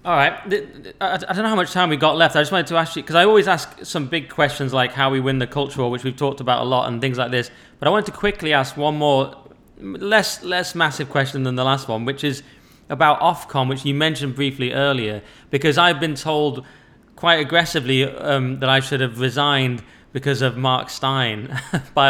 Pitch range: 125-145 Hz